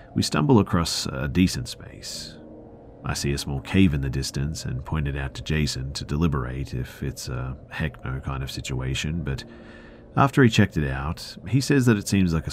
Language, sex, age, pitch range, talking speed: English, male, 40-59, 70-95 Hz, 205 wpm